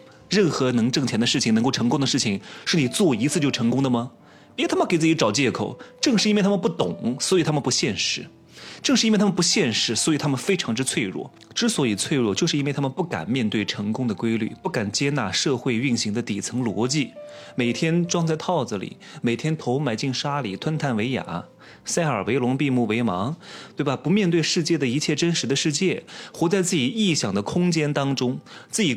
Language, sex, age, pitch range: Chinese, male, 30-49, 125-175 Hz